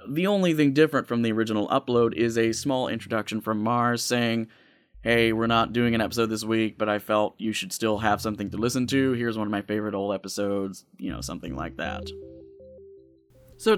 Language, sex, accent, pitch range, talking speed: English, male, American, 110-165 Hz, 205 wpm